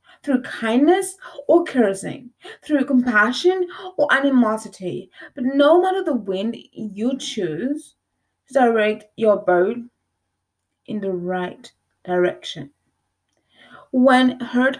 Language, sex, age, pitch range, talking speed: English, female, 20-39, 215-295 Hz, 100 wpm